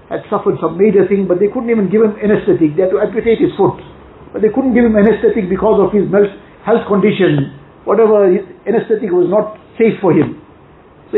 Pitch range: 180-230 Hz